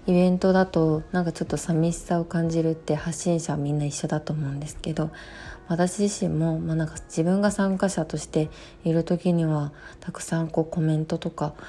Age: 20-39